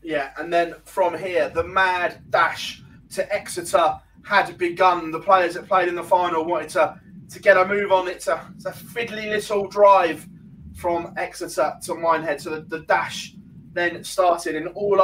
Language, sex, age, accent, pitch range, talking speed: English, male, 20-39, British, 160-190 Hz, 180 wpm